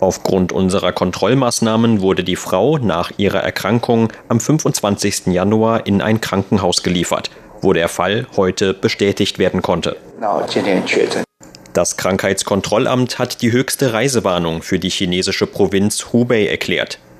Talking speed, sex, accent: 120 wpm, male, German